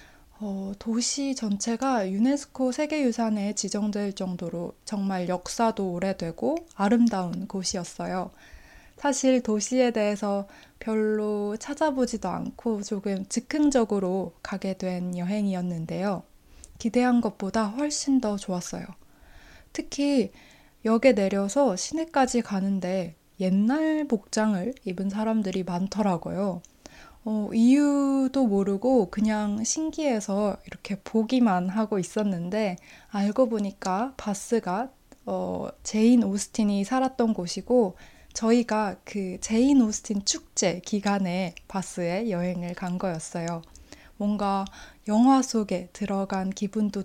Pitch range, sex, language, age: 190-240 Hz, female, Korean, 20-39